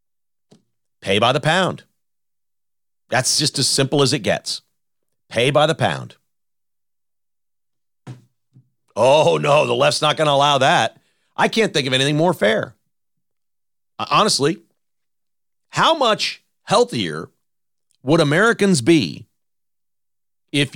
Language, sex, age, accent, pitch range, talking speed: English, male, 40-59, American, 125-160 Hz, 115 wpm